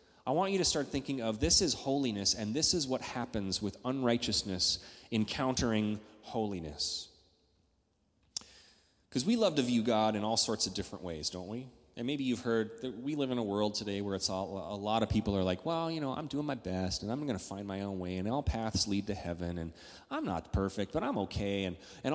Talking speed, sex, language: 225 wpm, male, English